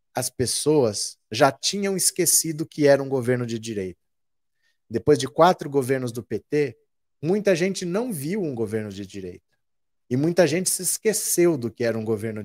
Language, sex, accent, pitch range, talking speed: Portuguese, male, Brazilian, 125-160 Hz, 170 wpm